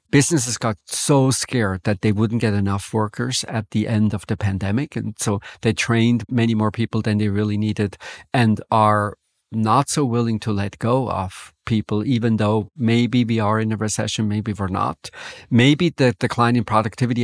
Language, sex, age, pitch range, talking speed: English, male, 50-69, 110-135 Hz, 185 wpm